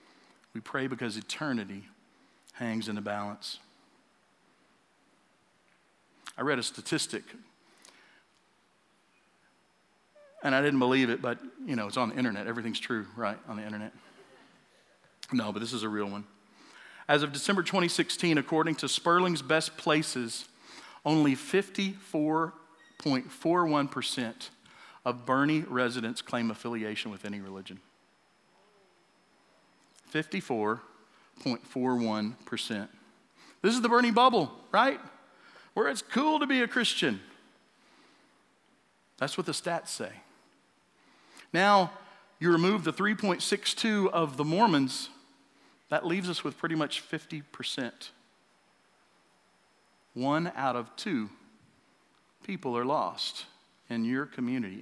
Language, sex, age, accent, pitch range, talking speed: English, male, 50-69, American, 120-185 Hz, 110 wpm